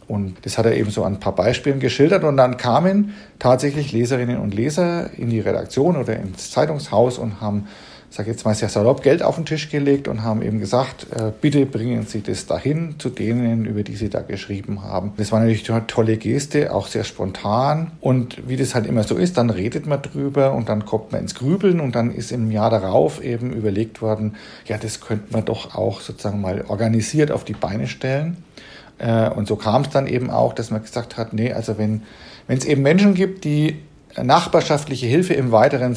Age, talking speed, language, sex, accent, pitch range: 50-69, 210 wpm, German, male, German, 110-140 Hz